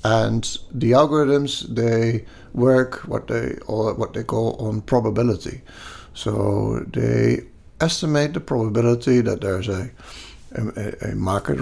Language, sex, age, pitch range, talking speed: English, male, 60-79, 105-135 Hz, 125 wpm